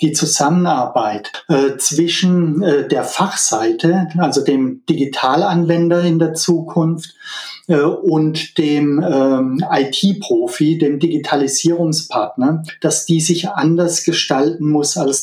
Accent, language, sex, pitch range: German, German, male, 145-175 Hz